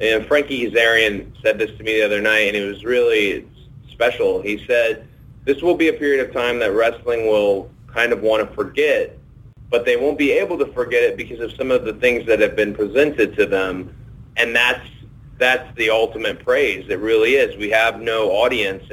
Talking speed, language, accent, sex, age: 205 wpm, English, American, male, 30-49